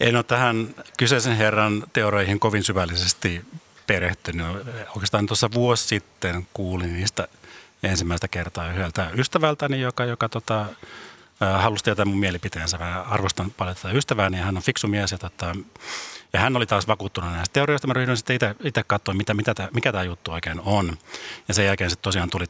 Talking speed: 170 wpm